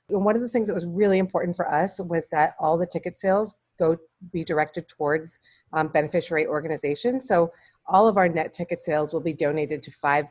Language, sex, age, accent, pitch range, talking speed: English, female, 30-49, American, 145-170 Hz, 205 wpm